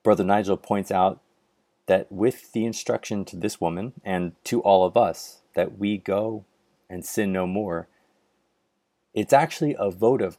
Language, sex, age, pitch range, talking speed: English, male, 30-49, 90-120 Hz, 160 wpm